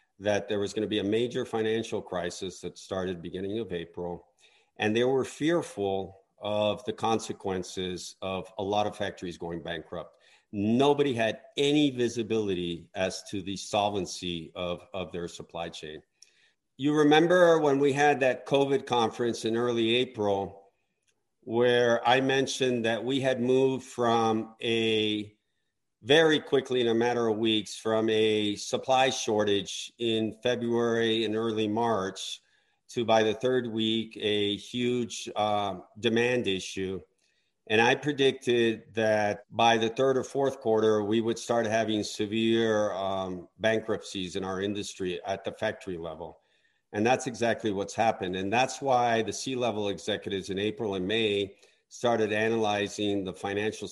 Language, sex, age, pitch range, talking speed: English, male, 50-69, 100-120 Hz, 145 wpm